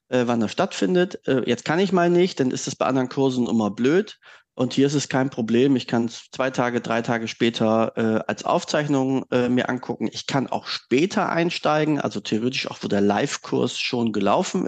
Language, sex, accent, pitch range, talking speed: German, male, German, 115-145 Hz, 200 wpm